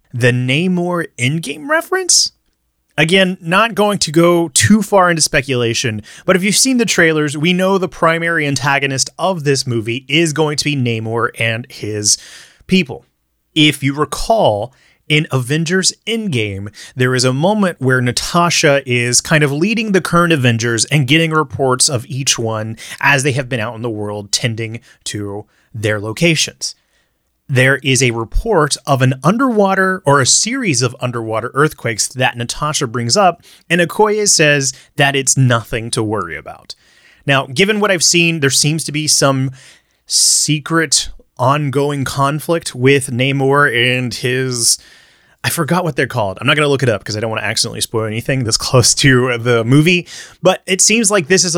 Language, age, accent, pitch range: English, 30-49, American, 120-165 Hz